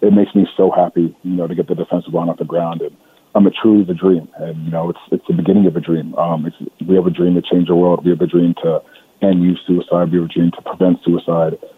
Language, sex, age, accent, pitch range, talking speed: English, male, 30-49, American, 85-90 Hz, 290 wpm